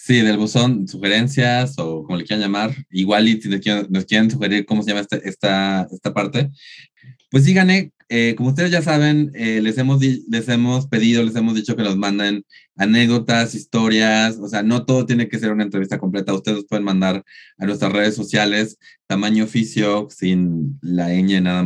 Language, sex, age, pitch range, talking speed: Spanish, male, 20-39, 95-110 Hz, 185 wpm